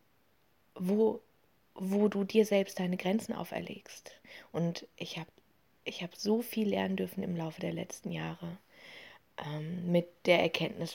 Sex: female